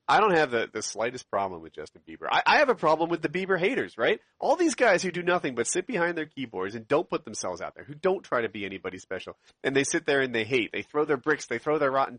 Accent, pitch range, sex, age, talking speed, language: American, 140-215 Hz, male, 40-59, 290 wpm, English